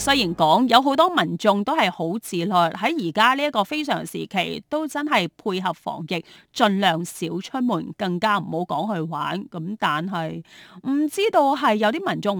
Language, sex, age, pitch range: Chinese, female, 30-49, 180-270 Hz